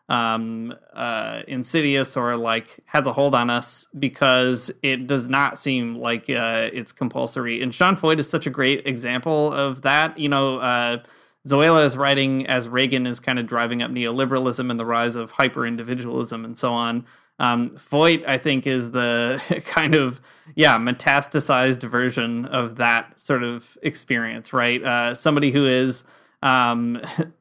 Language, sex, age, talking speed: English, male, 20-39, 160 wpm